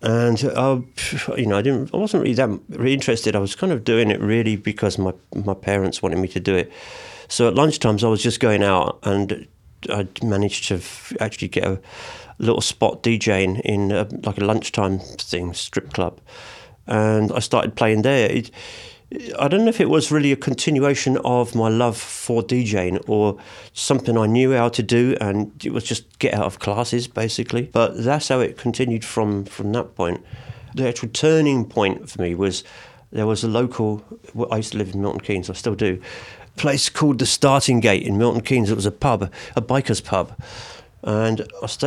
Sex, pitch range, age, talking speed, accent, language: male, 100-120 Hz, 40-59, 200 wpm, British, English